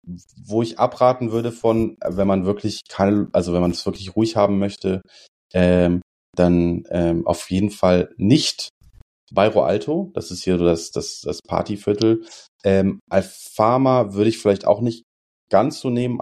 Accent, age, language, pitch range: German, 30-49, German, 90-115 Hz